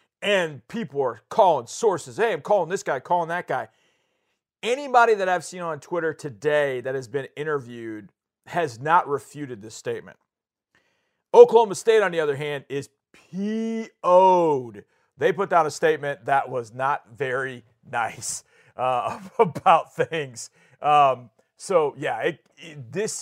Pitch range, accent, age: 140-205 Hz, American, 40-59